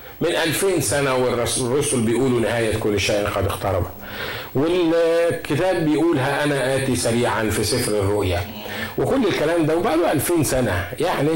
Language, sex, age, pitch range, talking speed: Arabic, male, 50-69, 110-140 Hz, 130 wpm